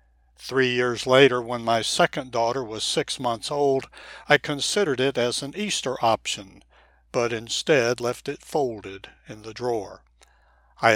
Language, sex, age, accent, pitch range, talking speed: English, male, 60-79, American, 110-135 Hz, 150 wpm